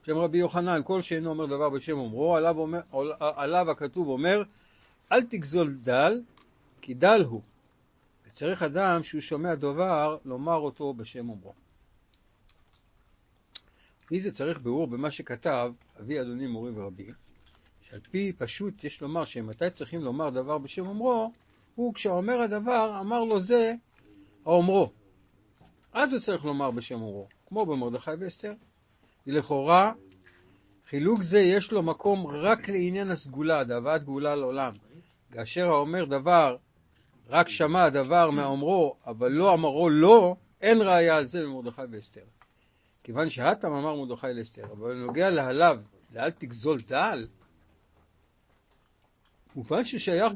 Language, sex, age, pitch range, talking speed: Hebrew, male, 60-79, 120-190 Hz, 130 wpm